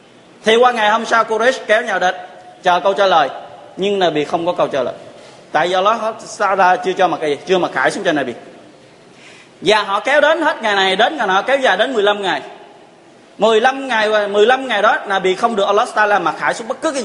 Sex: male